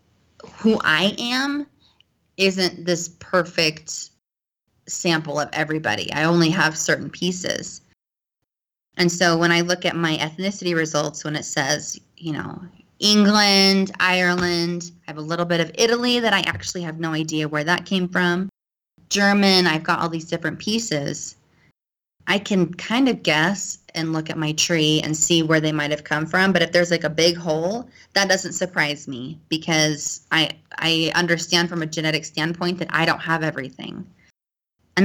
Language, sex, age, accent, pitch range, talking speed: English, female, 20-39, American, 160-195 Hz, 165 wpm